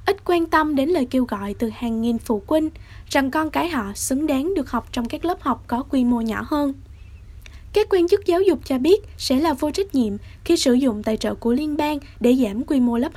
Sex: female